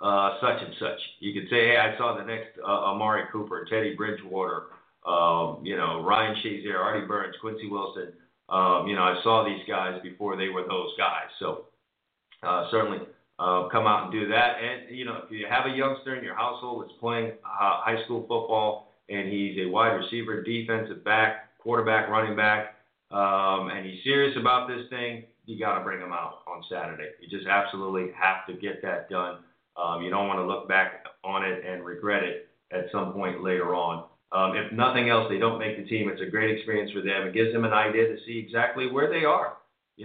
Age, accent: 40-59, American